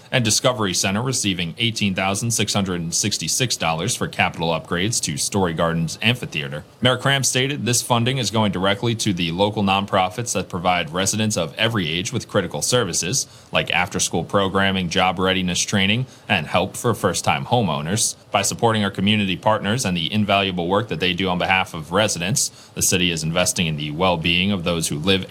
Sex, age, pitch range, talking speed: male, 30-49, 95-115 Hz, 170 wpm